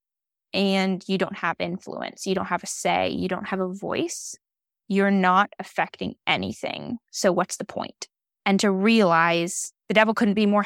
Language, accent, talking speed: English, American, 175 wpm